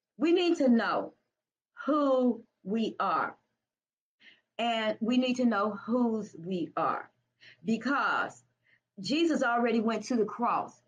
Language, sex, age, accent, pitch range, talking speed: English, female, 40-59, American, 215-255 Hz, 120 wpm